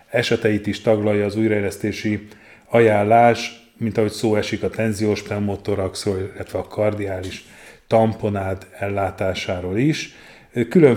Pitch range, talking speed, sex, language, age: 95-110 Hz, 110 wpm, male, Hungarian, 30-49